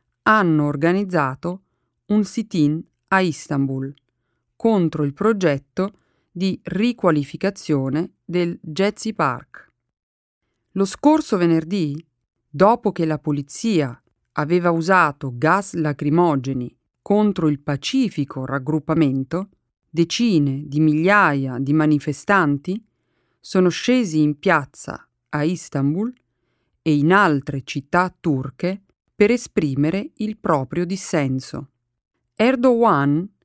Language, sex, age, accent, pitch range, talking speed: Italian, female, 40-59, native, 145-205 Hz, 90 wpm